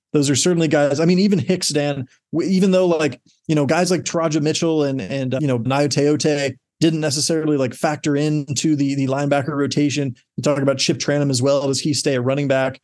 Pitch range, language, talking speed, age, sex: 135-155 Hz, English, 225 wpm, 30-49, male